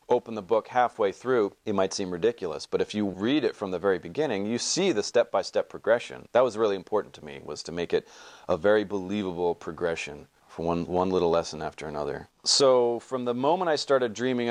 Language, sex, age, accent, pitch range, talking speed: English, male, 40-59, American, 95-130 Hz, 210 wpm